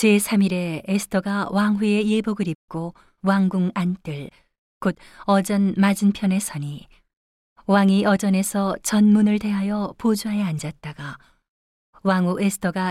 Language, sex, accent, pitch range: Korean, female, native, 170-205 Hz